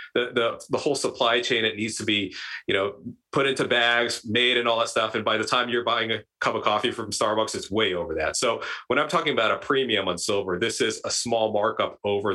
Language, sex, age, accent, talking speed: English, male, 40-59, American, 250 wpm